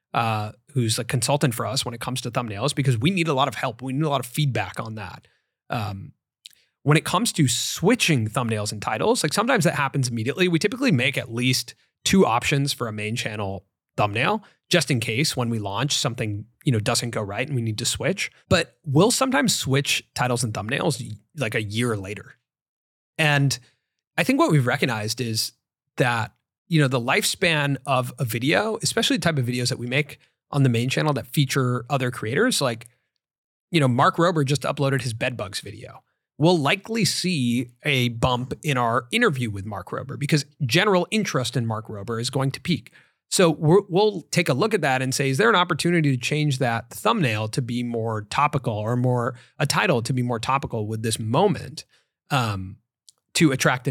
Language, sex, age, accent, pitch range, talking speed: English, male, 30-49, American, 120-155 Hz, 200 wpm